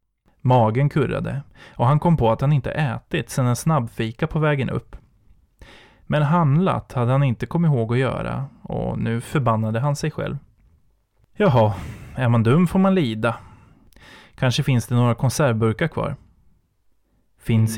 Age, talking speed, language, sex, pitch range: 20-39, 155 wpm, Swedish, male, 115-145 Hz